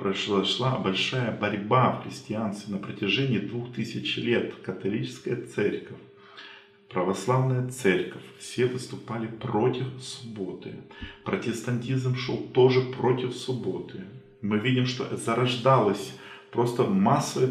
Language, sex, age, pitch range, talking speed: Russian, male, 40-59, 115-160 Hz, 100 wpm